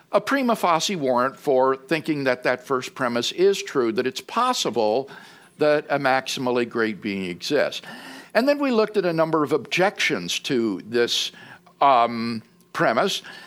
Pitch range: 145-205 Hz